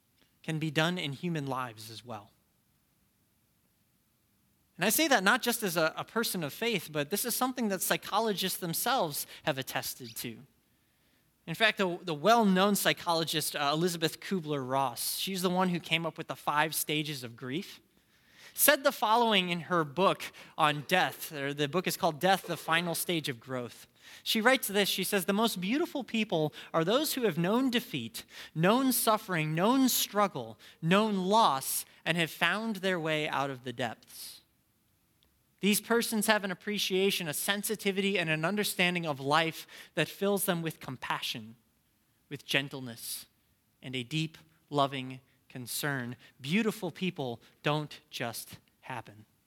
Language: English